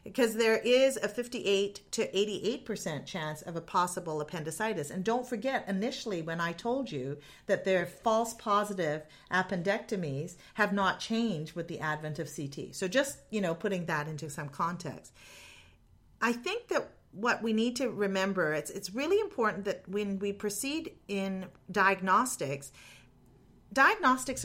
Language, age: English, 40-59